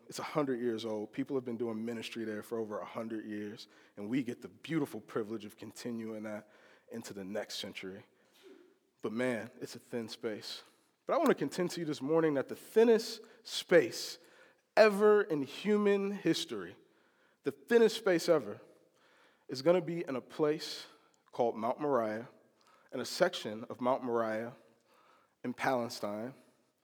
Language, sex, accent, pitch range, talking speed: English, male, American, 115-165 Hz, 160 wpm